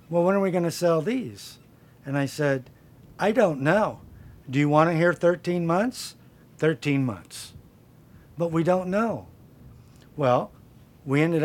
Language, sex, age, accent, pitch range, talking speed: English, male, 50-69, American, 125-160 Hz, 145 wpm